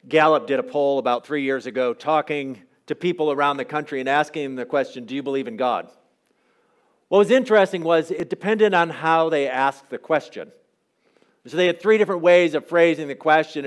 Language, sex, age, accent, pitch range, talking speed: English, male, 50-69, American, 135-175 Hz, 200 wpm